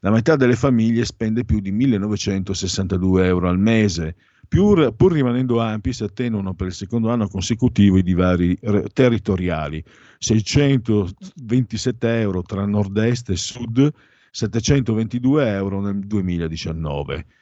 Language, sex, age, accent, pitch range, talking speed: Italian, male, 50-69, native, 90-120 Hz, 120 wpm